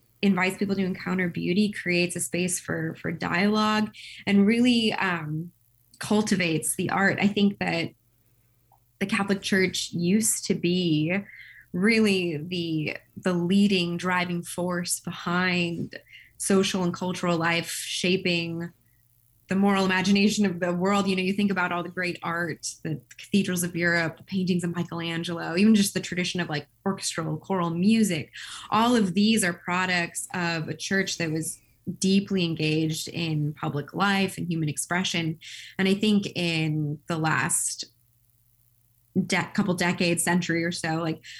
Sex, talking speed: female, 145 wpm